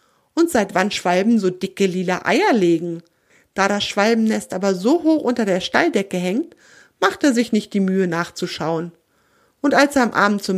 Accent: German